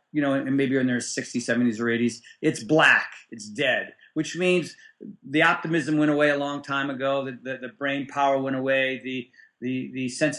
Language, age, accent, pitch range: English, 40-59, American, 130-165 Hz